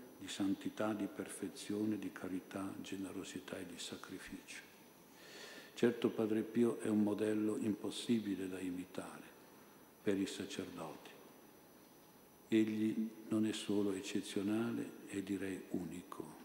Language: Italian